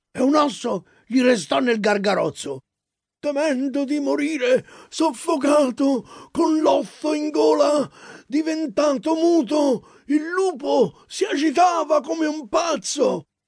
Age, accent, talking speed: 50-69, native, 105 wpm